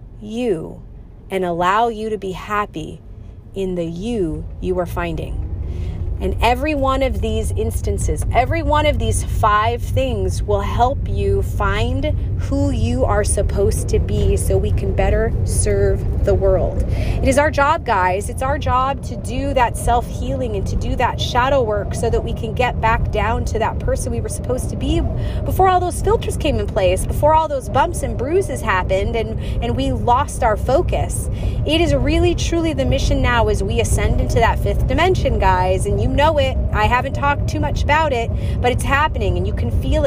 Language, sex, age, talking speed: English, female, 30-49, 190 wpm